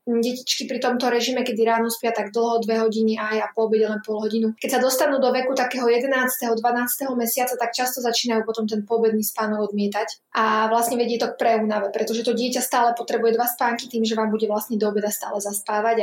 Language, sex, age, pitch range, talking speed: Slovak, female, 20-39, 215-240 Hz, 215 wpm